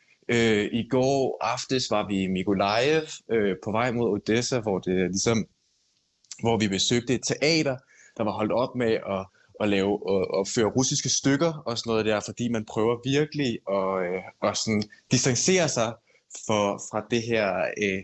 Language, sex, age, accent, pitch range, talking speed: Danish, male, 20-39, native, 110-140 Hz, 160 wpm